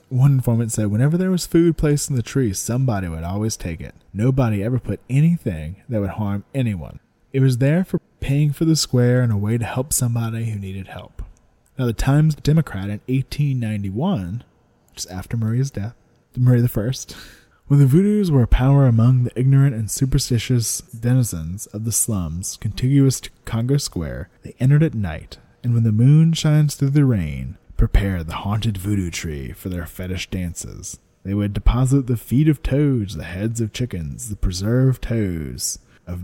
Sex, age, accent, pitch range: male, 20-39, American, 95-130 Hz